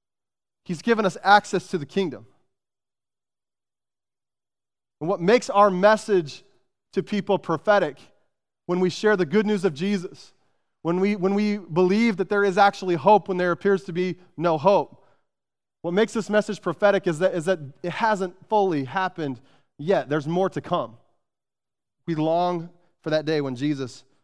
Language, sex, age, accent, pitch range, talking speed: English, male, 30-49, American, 155-195 Hz, 160 wpm